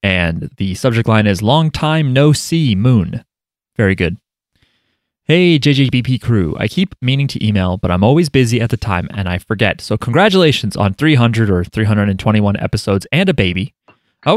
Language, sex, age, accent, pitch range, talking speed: English, male, 30-49, American, 105-140 Hz, 170 wpm